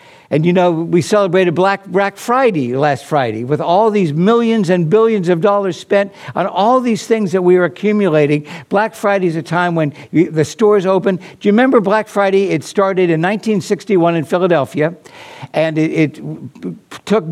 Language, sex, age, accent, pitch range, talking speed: English, male, 60-79, American, 165-205 Hz, 175 wpm